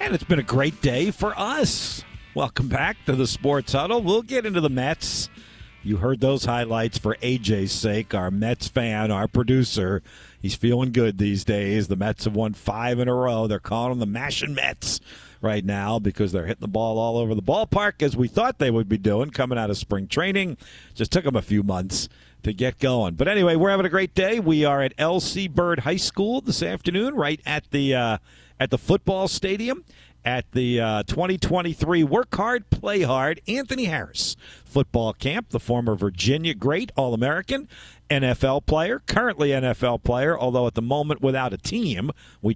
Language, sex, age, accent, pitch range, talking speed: English, male, 50-69, American, 110-155 Hz, 190 wpm